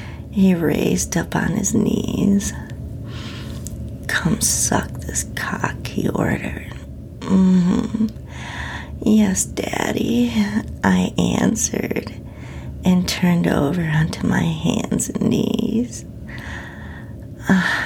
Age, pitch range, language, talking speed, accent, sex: 40-59, 175-220 Hz, English, 85 wpm, American, female